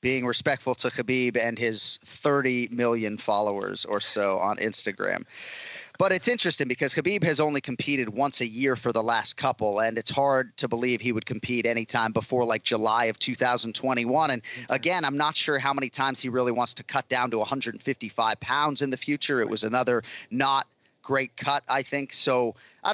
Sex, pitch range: male, 120-140 Hz